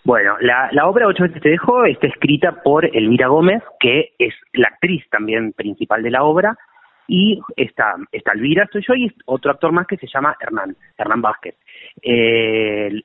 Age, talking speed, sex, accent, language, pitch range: 30-49, 185 wpm, male, Argentinian, Spanish, 125-190 Hz